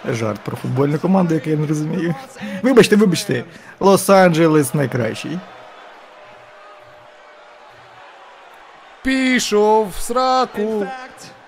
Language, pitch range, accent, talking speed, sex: Ukrainian, 145-220 Hz, native, 80 wpm, male